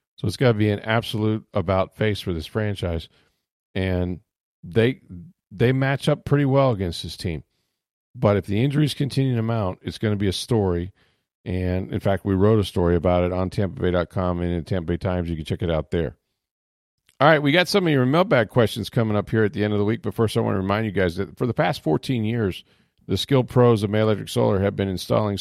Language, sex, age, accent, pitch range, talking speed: English, male, 40-59, American, 95-120 Hz, 230 wpm